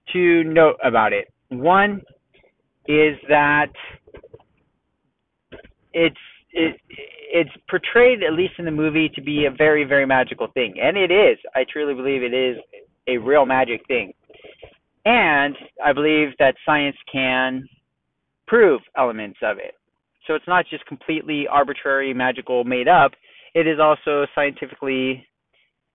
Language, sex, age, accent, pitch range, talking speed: English, male, 30-49, American, 130-160 Hz, 130 wpm